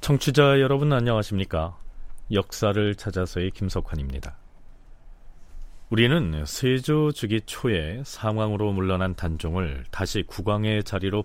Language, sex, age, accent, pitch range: Korean, male, 40-59, native, 90-135 Hz